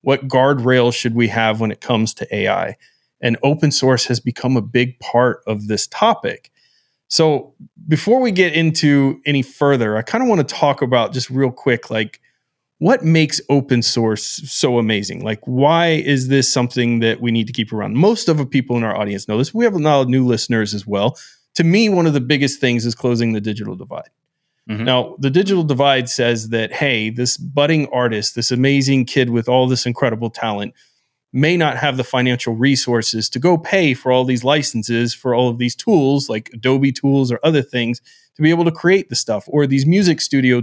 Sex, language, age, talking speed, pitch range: male, English, 30-49, 205 wpm, 120-150 Hz